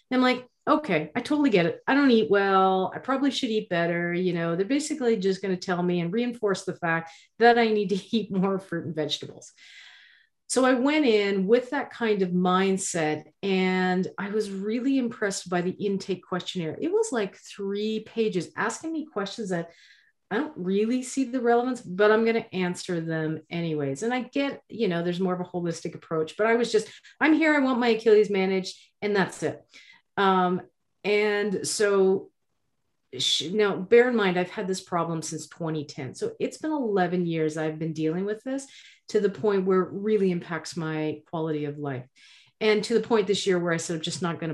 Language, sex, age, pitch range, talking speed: English, female, 40-59, 170-225 Hz, 200 wpm